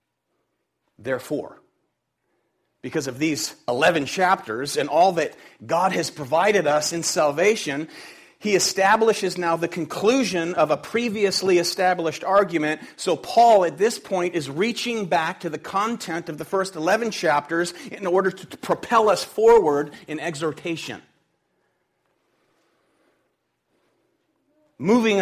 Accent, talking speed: American, 120 wpm